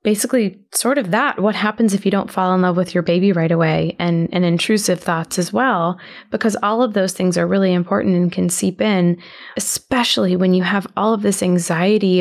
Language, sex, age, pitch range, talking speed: English, female, 20-39, 180-205 Hz, 210 wpm